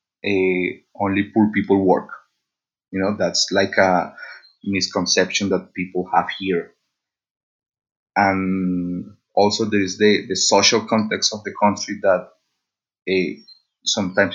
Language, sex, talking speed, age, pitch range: English, male, 115 wpm, 30-49, 95-105 Hz